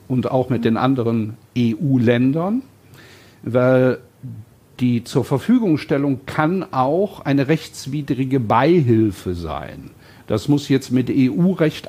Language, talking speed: German, 105 wpm